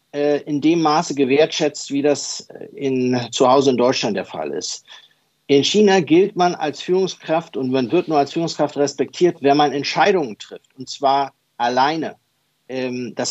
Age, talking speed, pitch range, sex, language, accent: 50-69, 160 wpm, 130-155 Hz, male, German, German